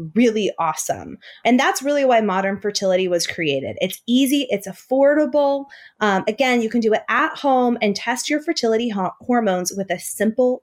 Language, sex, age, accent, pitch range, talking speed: English, female, 20-39, American, 180-240 Hz, 170 wpm